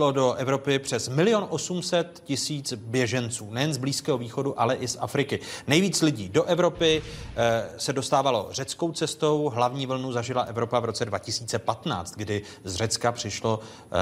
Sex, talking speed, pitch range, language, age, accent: male, 145 wpm, 110-130 Hz, Czech, 30-49, native